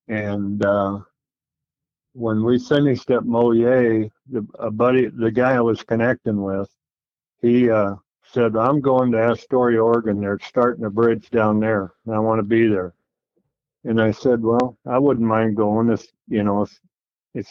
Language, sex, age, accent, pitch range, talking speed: English, male, 50-69, American, 105-115 Hz, 170 wpm